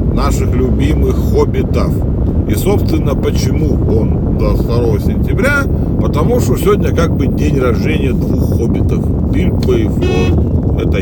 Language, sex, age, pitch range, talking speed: Russian, male, 40-59, 80-100 Hz, 110 wpm